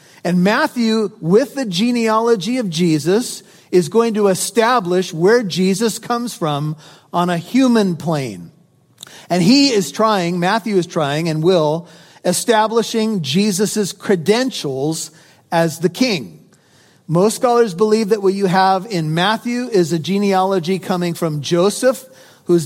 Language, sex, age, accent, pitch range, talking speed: English, male, 40-59, American, 170-210 Hz, 130 wpm